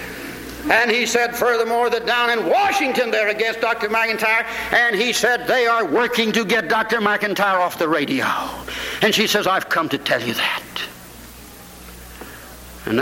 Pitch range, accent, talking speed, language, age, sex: 145-235 Hz, American, 160 wpm, English, 60-79, male